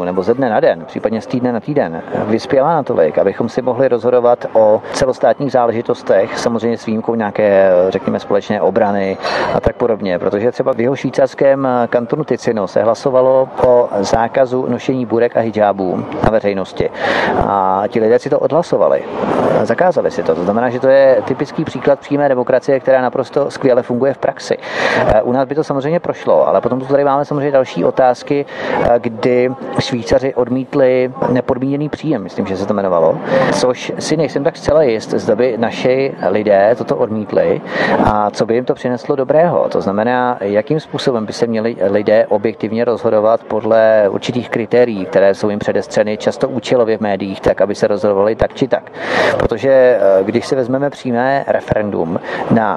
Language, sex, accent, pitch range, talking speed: Czech, male, native, 110-135 Hz, 170 wpm